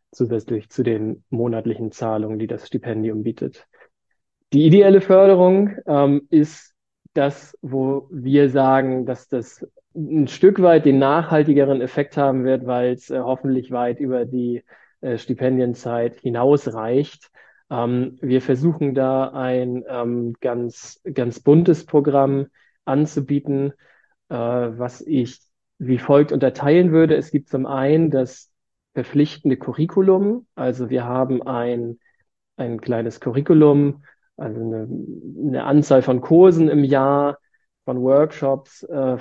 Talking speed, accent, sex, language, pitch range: 125 wpm, German, male, German, 125-145 Hz